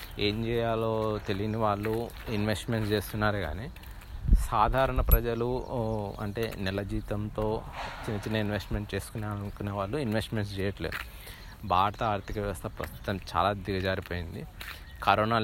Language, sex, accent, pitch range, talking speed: Telugu, male, native, 95-115 Hz, 105 wpm